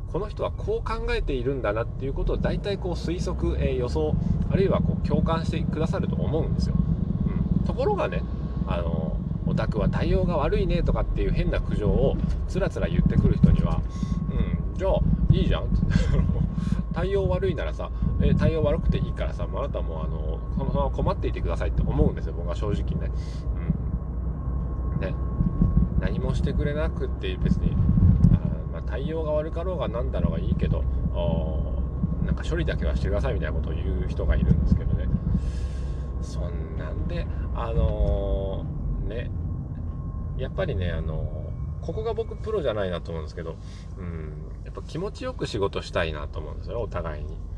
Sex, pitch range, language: male, 80-90 Hz, Japanese